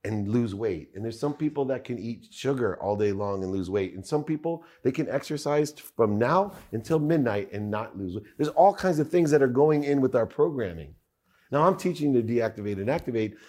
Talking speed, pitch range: 225 wpm, 100-140 Hz